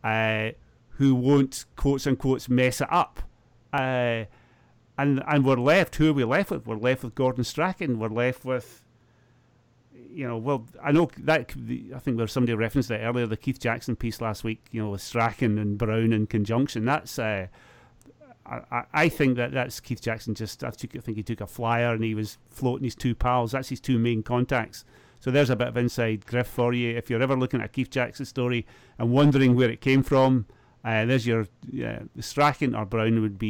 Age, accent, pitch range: 40-59, British, 110-125 Hz